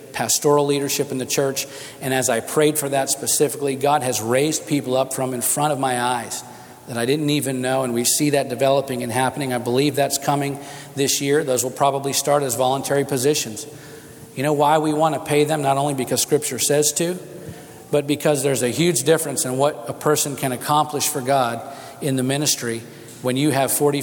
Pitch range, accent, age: 130-145 Hz, American, 40-59